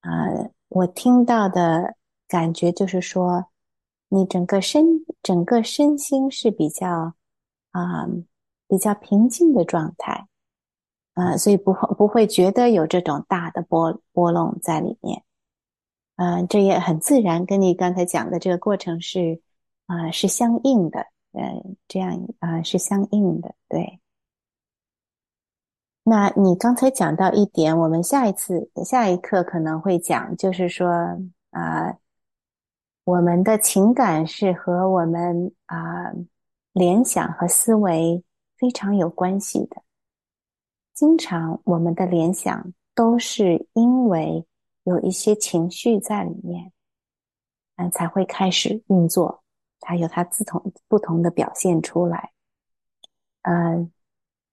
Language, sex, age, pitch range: English, female, 30-49, 170-210 Hz